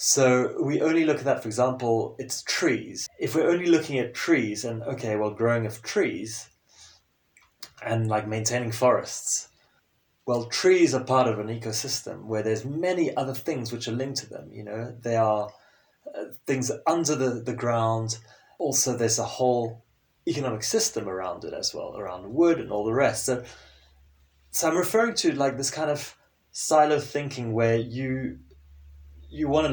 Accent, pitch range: British, 115-150 Hz